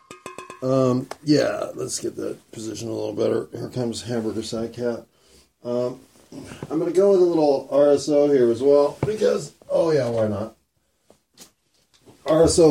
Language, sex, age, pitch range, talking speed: English, male, 30-49, 105-140 Hz, 145 wpm